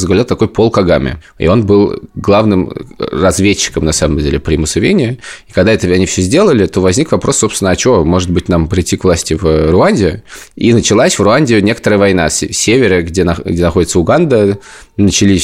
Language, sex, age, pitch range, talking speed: Russian, male, 20-39, 90-110 Hz, 185 wpm